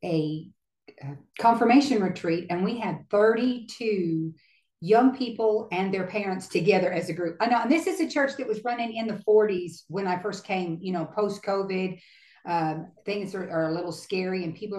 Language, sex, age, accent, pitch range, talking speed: English, female, 50-69, American, 180-220 Hz, 185 wpm